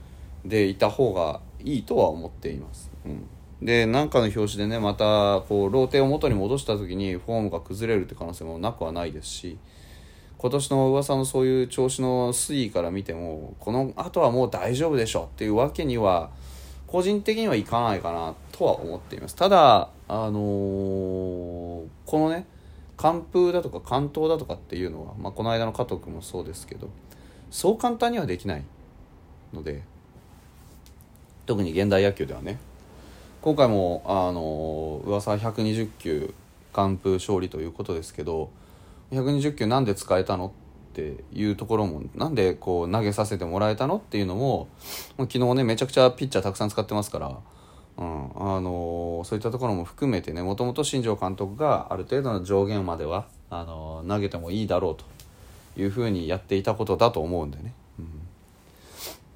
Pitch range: 85-125 Hz